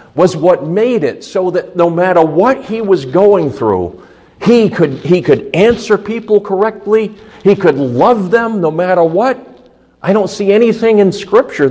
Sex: male